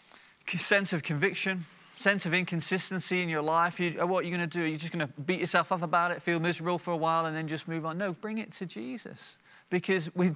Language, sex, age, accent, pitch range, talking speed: English, male, 30-49, British, 140-175 Hz, 245 wpm